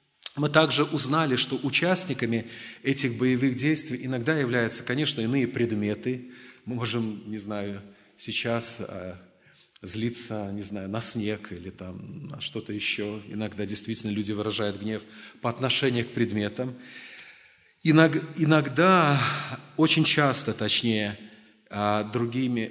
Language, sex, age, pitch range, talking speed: Russian, male, 30-49, 115-150 Hz, 115 wpm